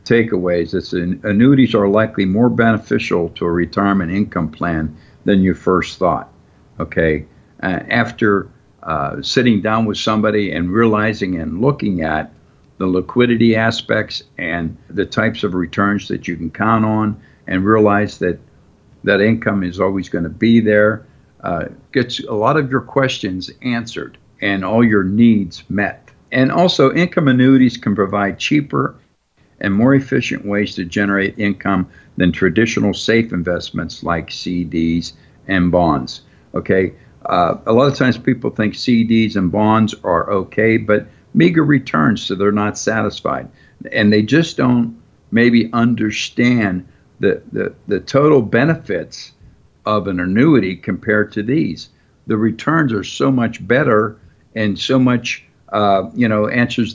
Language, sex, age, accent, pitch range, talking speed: English, male, 60-79, American, 95-120 Hz, 145 wpm